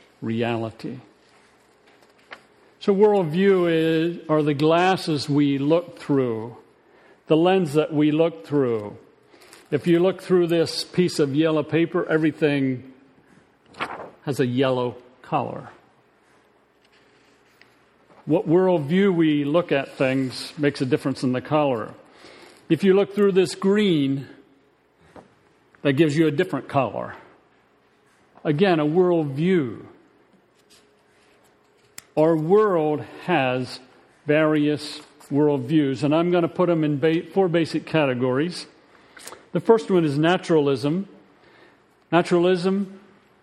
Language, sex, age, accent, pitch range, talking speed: English, male, 50-69, American, 140-175 Hz, 105 wpm